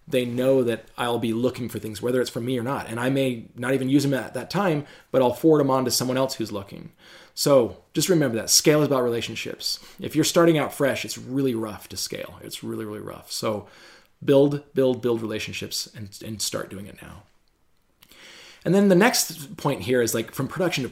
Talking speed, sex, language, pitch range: 225 wpm, male, English, 120-155 Hz